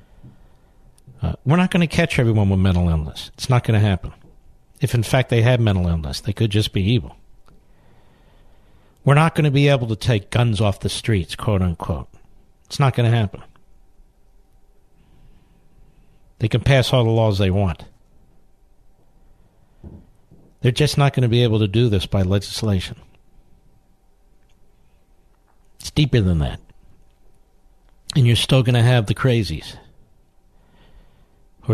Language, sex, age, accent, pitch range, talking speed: English, male, 60-79, American, 100-125 Hz, 145 wpm